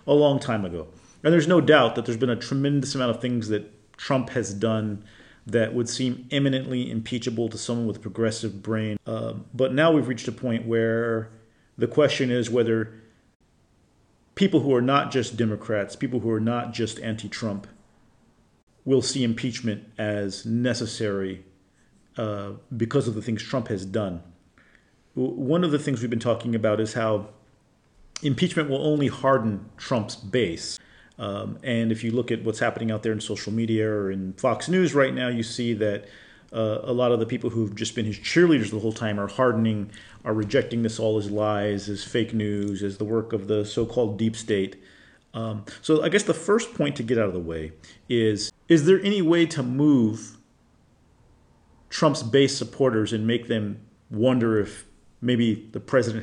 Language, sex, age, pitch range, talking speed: English, male, 40-59, 105-125 Hz, 180 wpm